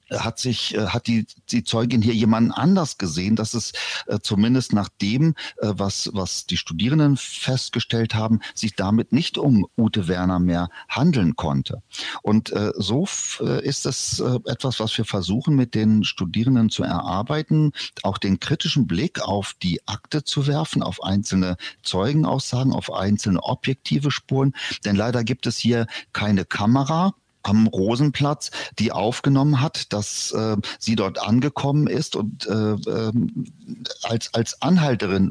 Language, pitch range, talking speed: German, 105-130 Hz, 150 wpm